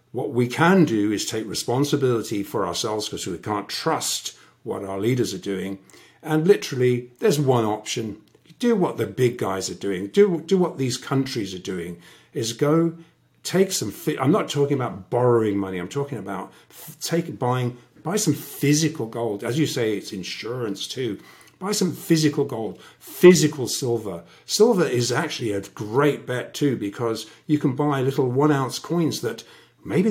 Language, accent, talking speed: English, British, 170 wpm